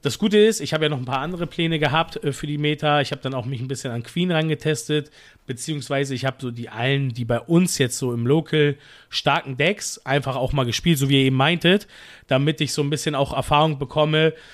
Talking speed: 235 wpm